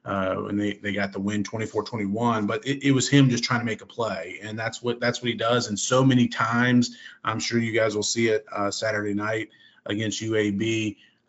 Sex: male